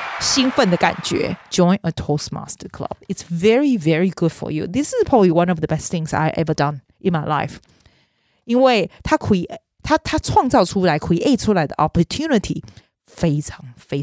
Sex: female